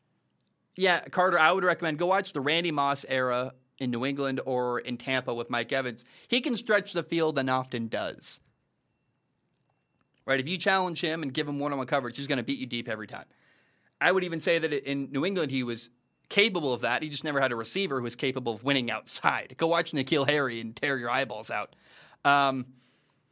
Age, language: 30-49, English